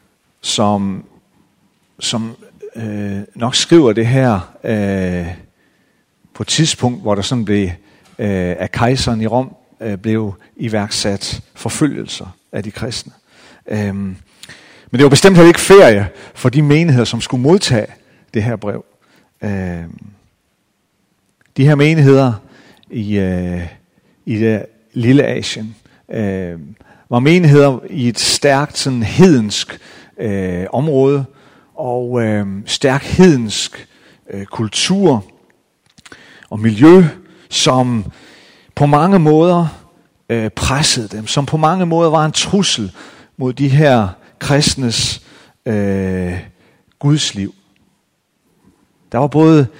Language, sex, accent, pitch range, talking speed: Danish, male, native, 100-145 Hz, 110 wpm